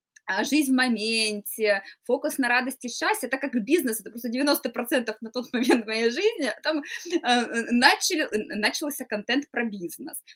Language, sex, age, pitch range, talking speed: Russian, female, 20-39, 210-275 Hz, 145 wpm